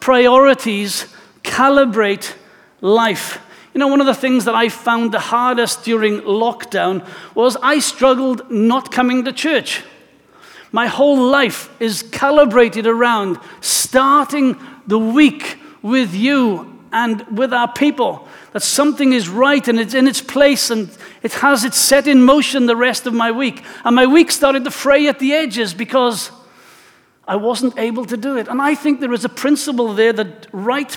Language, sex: English, male